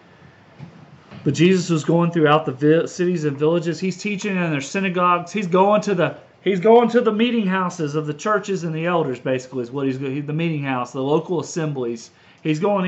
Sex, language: male, English